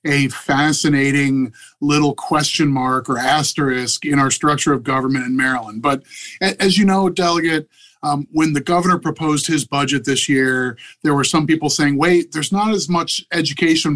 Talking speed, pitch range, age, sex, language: 170 wpm, 140-160 Hz, 30-49, male, English